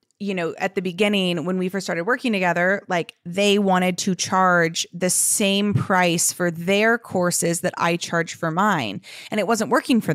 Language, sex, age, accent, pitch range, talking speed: English, female, 20-39, American, 185-235 Hz, 190 wpm